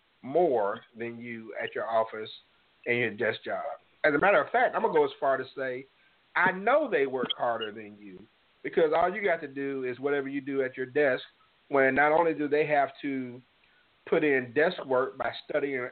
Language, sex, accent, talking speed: English, male, American, 210 wpm